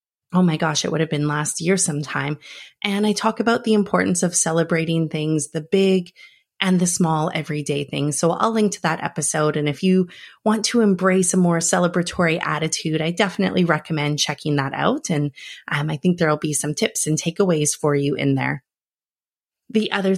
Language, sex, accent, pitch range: English, female, American, 155-200 Hz